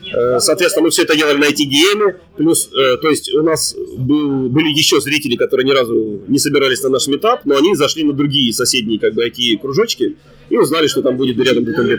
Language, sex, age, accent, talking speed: Russian, male, 30-49, native, 210 wpm